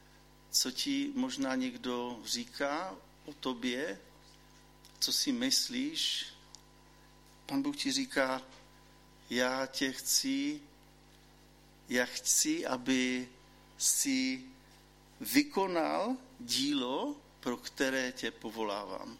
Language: Czech